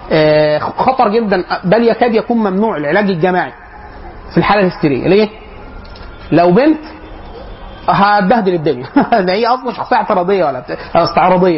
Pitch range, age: 155-215 Hz, 30-49